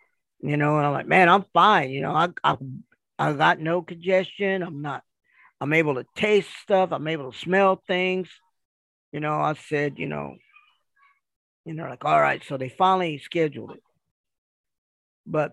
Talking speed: 175 wpm